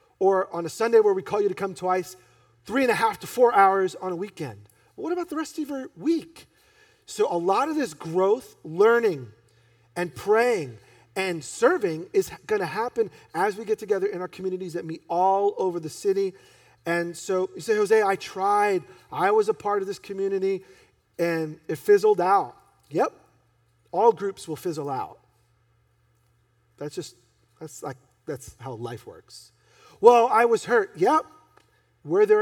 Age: 40-59